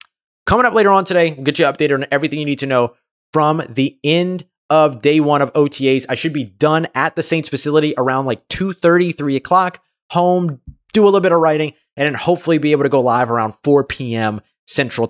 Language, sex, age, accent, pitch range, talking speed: English, male, 20-39, American, 115-165 Hz, 220 wpm